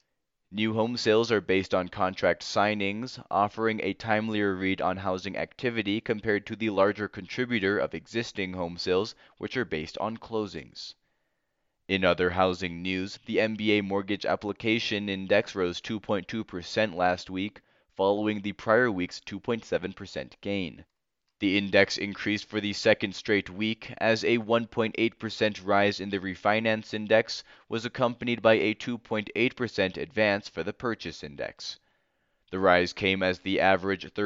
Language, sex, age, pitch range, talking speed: English, male, 20-39, 95-110 Hz, 145 wpm